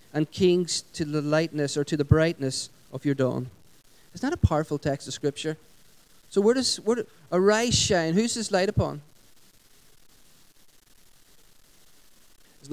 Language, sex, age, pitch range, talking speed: English, male, 40-59, 150-190 Hz, 150 wpm